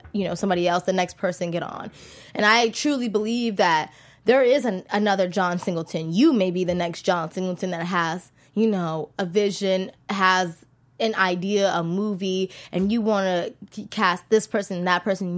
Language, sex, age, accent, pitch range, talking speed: English, female, 20-39, American, 175-250 Hz, 185 wpm